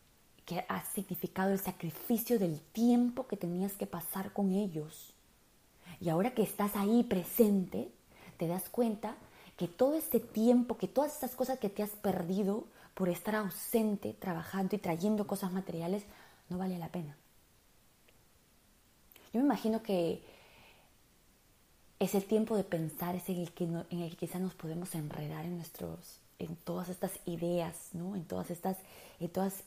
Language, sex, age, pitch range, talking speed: Spanish, female, 20-39, 170-210 Hz, 160 wpm